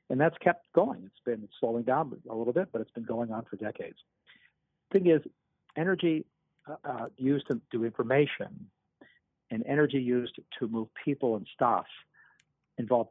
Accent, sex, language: American, male, English